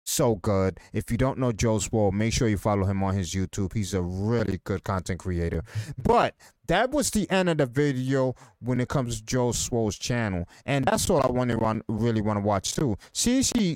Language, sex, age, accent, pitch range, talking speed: English, male, 30-49, American, 115-180 Hz, 210 wpm